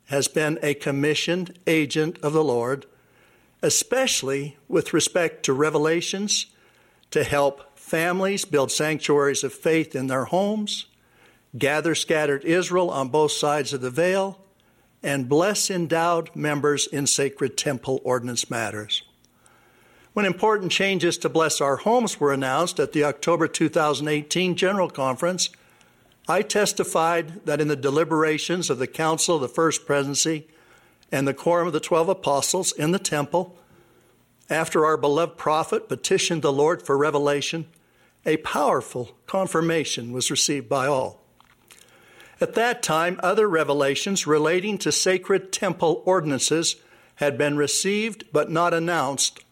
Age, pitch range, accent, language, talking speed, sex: 60-79, 145-180 Hz, American, English, 135 wpm, male